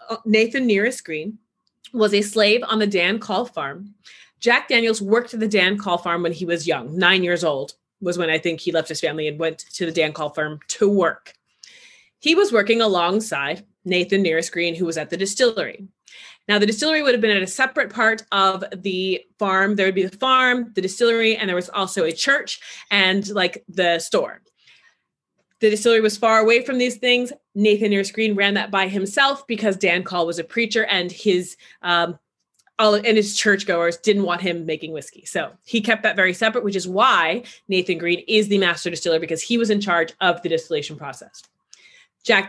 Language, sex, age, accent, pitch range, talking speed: English, female, 30-49, American, 175-225 Hz, 205 wpm